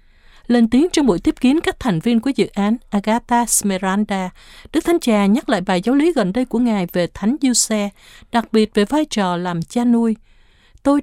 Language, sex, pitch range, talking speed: Vietnamese, female, 195-260 Hz, 205 wpm